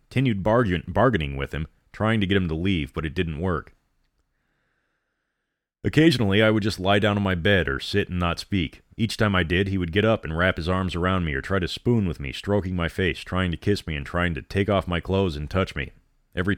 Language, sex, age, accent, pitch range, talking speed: English, male, 30-49, American, 85-100 Hz, 240 wpm